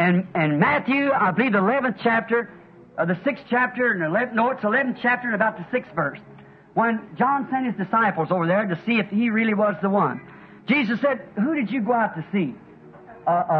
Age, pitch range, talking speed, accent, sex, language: 50-69, 195-270 Hz, 210 wpm, American, male, English